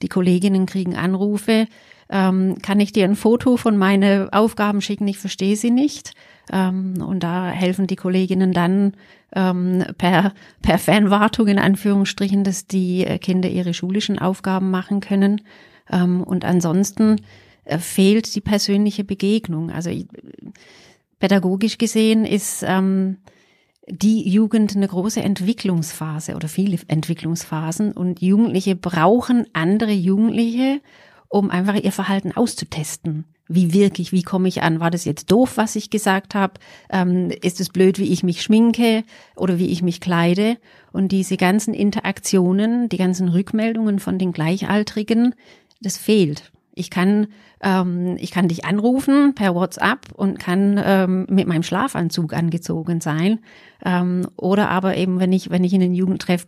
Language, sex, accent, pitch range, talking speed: German, female, German, 180-205 Hz, 140 wpm